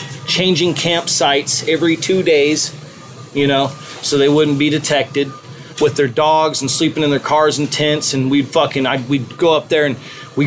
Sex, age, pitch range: male, 30-49, 140-170 Hz